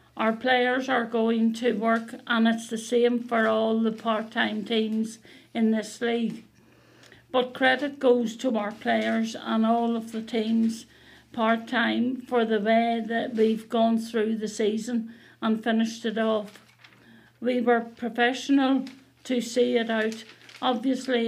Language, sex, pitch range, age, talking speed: English, female, 225-240 Hz, 50-69, 145 wpm